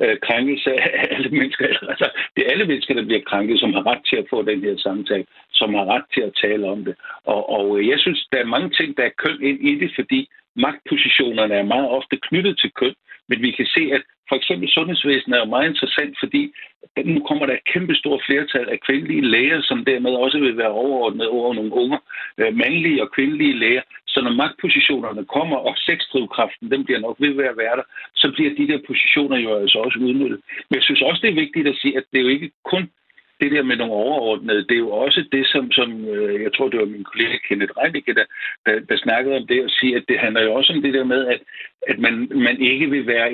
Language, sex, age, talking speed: Danish, male, 60-79, 230 wpm